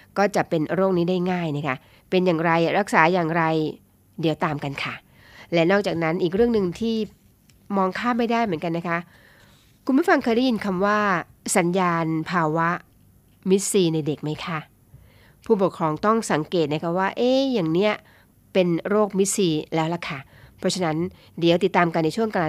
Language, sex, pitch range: Thai, female, 155-195 Hz